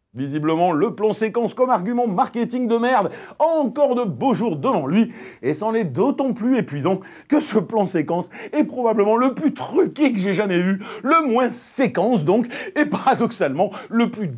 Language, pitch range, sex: French, 130-220 Hz, male